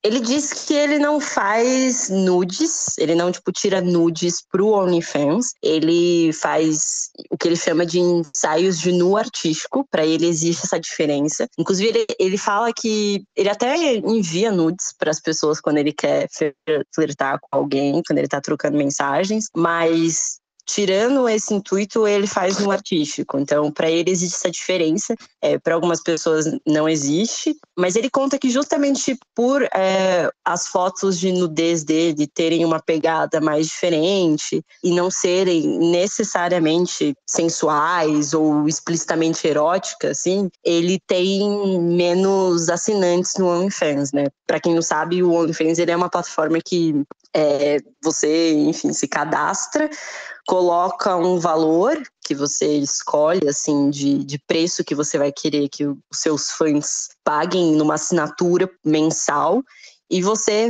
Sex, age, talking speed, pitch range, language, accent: female, 20-39, 145 wpm, 155-205 Hz, Portuguese, Brazilian